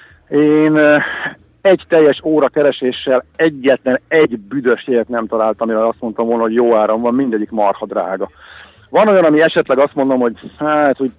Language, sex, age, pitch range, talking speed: Hungarian, male, 50-69, 120-150 Hz, 160 wpm